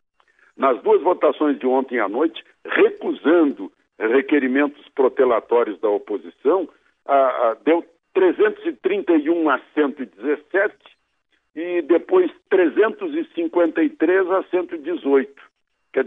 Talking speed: 90 wpm